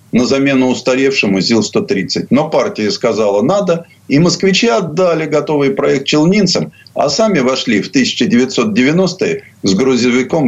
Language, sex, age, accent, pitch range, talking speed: Russian, male, 50-69, native, 110-150 Hz, 120 wpm